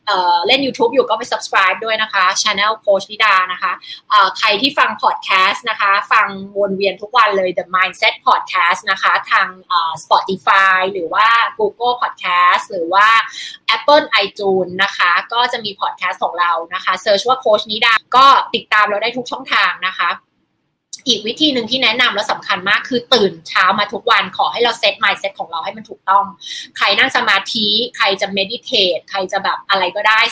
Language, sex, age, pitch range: Thai, female, 20-39, 195-255 Hz